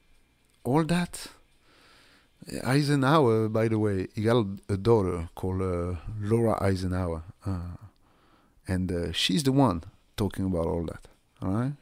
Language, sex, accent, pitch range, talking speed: English, male, French, 95-130 Hz, 130 wpm